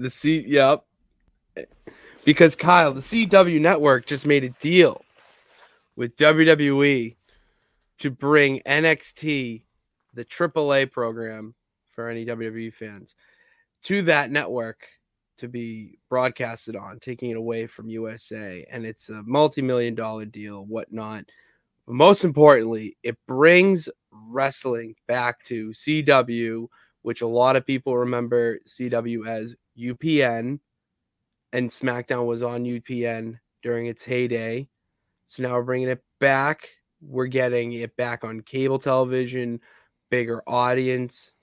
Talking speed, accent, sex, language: 125 wpm, American, male, English